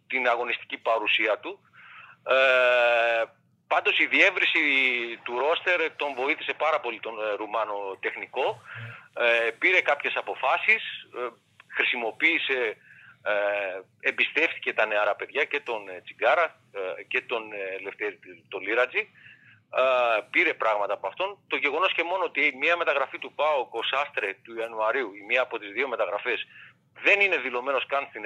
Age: 40-59